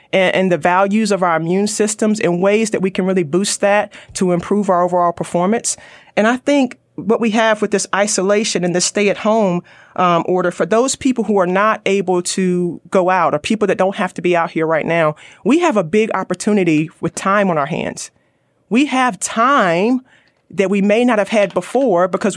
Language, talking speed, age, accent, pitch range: English, 210 wpm, 30-49, American, 180-220 Hz